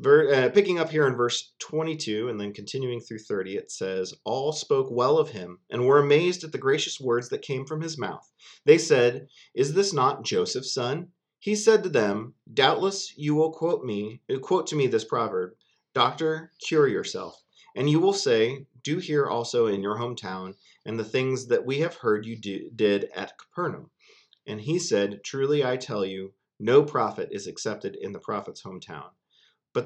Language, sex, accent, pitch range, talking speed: English, male, American, 110-160 Hz, 185 wpm